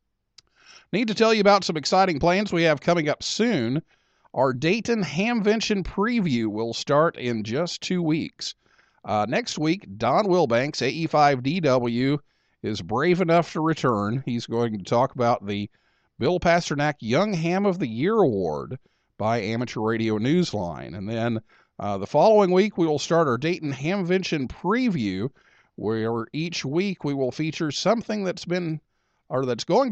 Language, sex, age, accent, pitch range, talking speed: English, male, 50-69, American, 120-185 Hz, 155 wpm